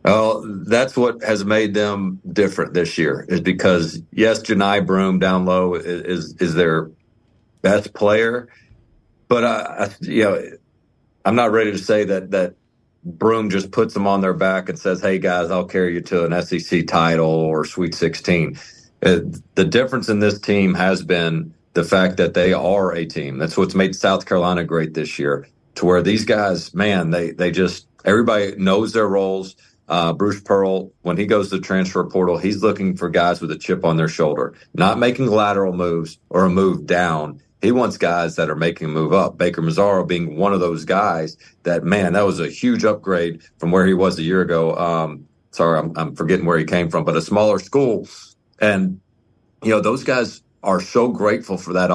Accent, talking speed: American, 195 wpm